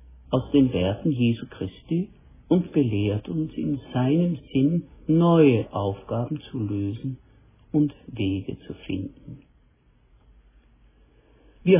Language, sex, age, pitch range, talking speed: German, male, 60-79, 100-145 Hz, 100 wpm